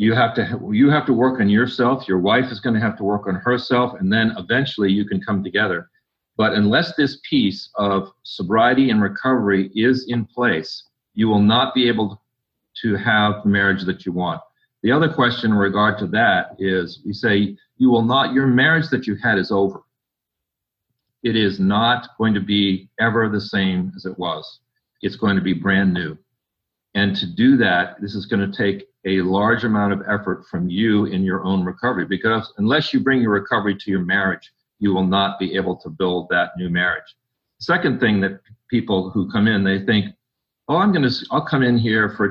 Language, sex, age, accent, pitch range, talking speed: English, male, 50-69, American, 95-120 Hz, 205 wpm